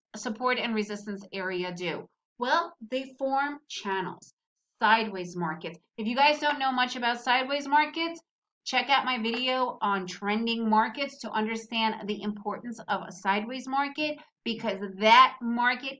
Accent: American